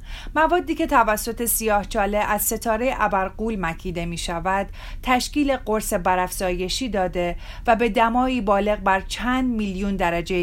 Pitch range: 185-235 Hz